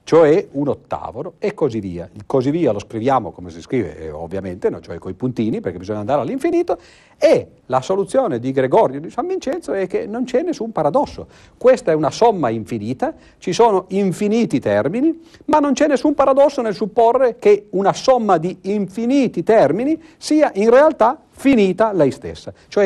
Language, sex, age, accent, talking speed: Italian, male, 50-69, native, 180 wpm